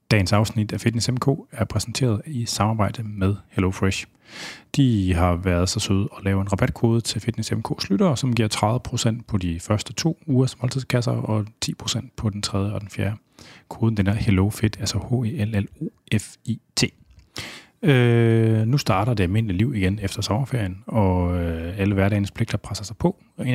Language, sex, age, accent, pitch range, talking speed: Danish, male, 30-49, native, 95-120 Hz, 165 wpm